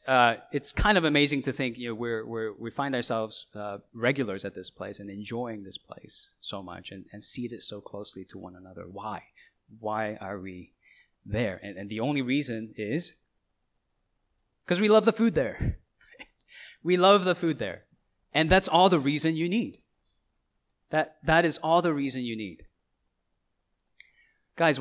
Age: 30-49